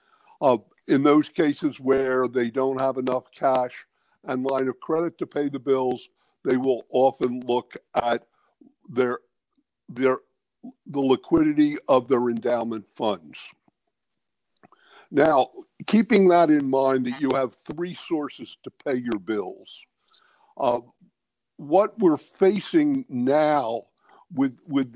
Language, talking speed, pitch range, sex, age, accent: English, 125 wpm, 130-200 Hz, male, 60-79, American